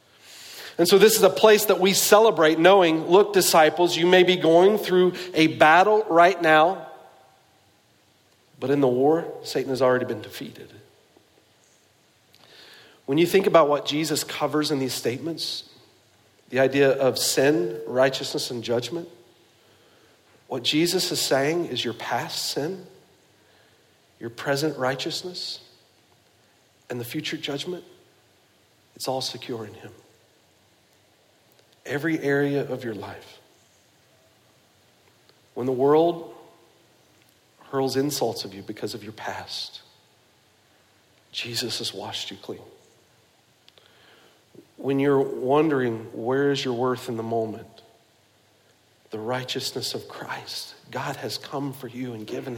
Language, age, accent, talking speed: English, 50-69, American, 125 wpm